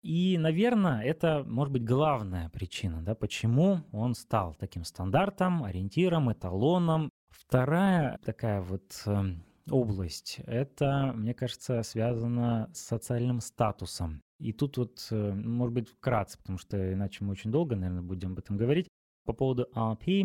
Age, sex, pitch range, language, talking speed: 20-39, male, 105-145 Hz, Russian, 135 wpm